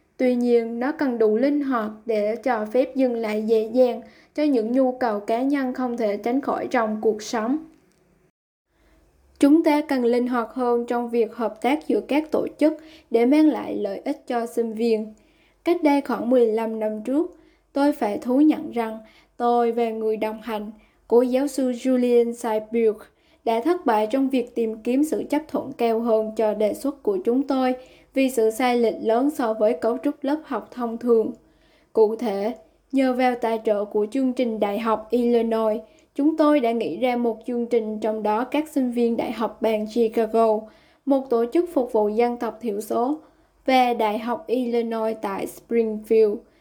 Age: 10-29